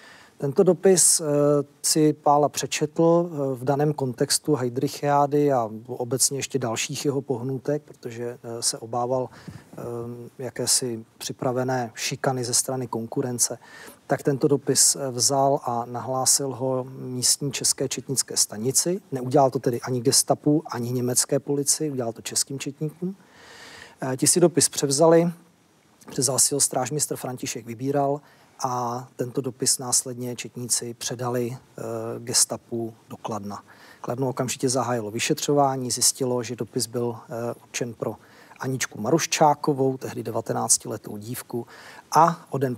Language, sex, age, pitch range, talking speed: Czech, male, 40-59, 120-140 Hz, 120 wpm